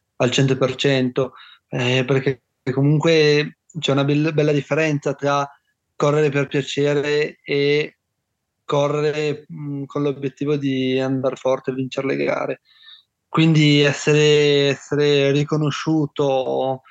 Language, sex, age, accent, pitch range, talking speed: Italian, male, 20-39, native, 130-145 Hz, 105 wpm